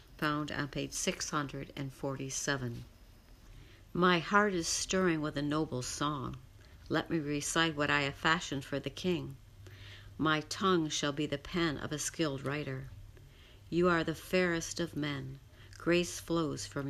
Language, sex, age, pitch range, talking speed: English, female, 60-79, 120-160 Hz, 145 wpm